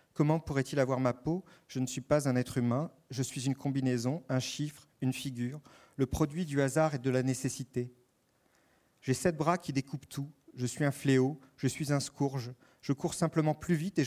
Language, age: French, 40-59